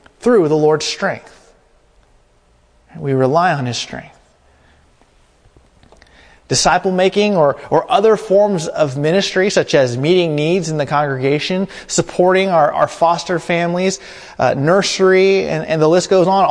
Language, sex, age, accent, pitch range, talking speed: English, male, 30-49, American, 140-185 Hz, 135 wpm